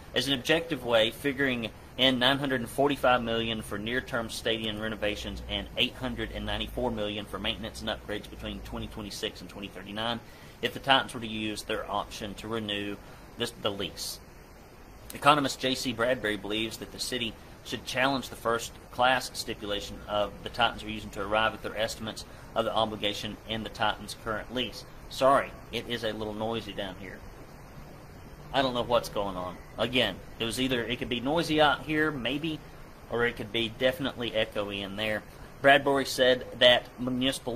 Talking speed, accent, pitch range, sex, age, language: 165 wpm, American, 105-125 Hz, male, 40-59, English